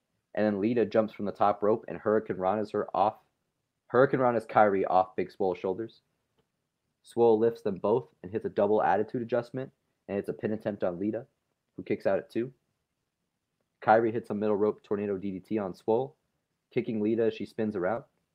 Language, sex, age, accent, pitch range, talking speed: English, male, 30-49, American, 100-115 Hz, 195 wpm